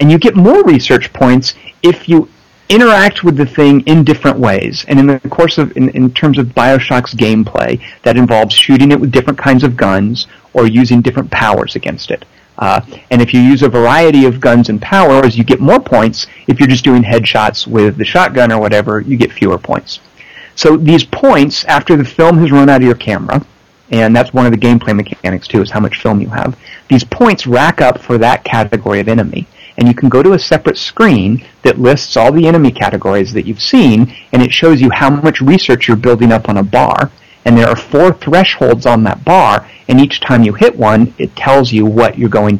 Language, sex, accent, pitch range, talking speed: English, male, American, 115-140 Hz, 220 wpm